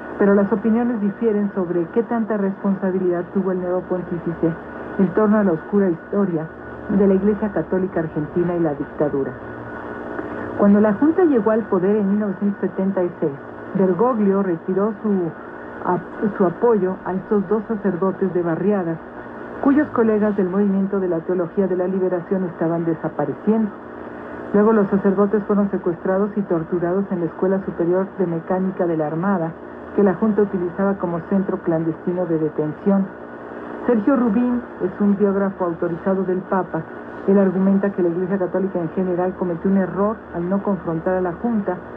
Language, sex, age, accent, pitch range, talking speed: Spanish, female, 50-69, Mexican, 170-200 Hz, 155 wpm